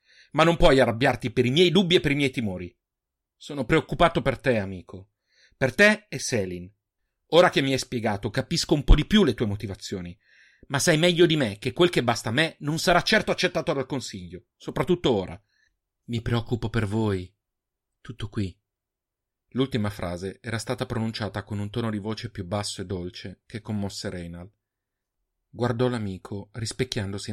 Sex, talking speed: male, 175 wpm